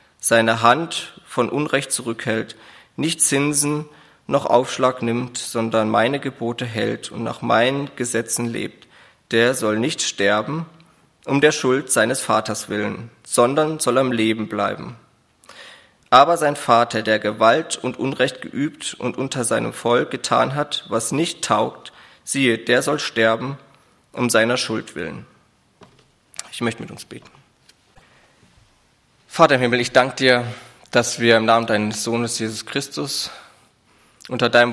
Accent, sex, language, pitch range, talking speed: German, male, German, 110-130 Hz, 140 wpm